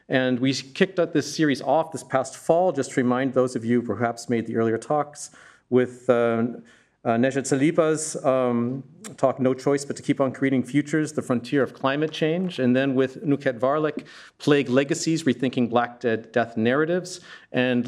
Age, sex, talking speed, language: 40-59, male, 180 wpm, English